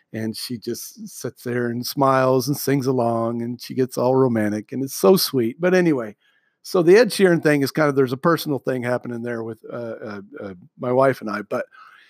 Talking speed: 220 wpm